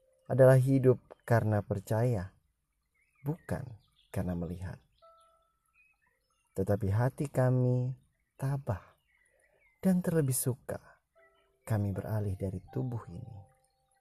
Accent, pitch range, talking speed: native, 105-155 Hz, 80 wpm